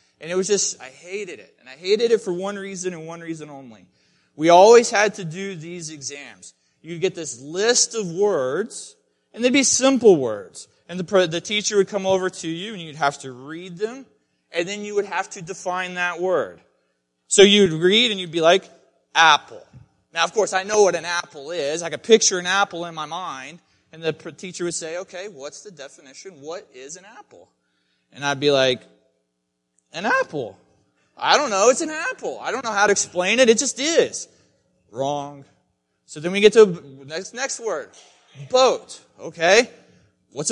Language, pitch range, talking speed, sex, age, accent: English, 145-220 Hz, 195 wpm, male, 30-49, American